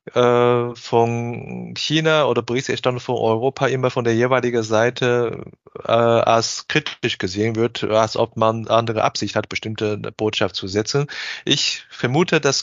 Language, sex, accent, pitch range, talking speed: German, male, German, 115-140 Hz, 135 wpm